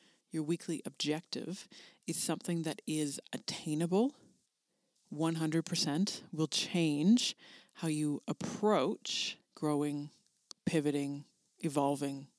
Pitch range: 155-200 Hz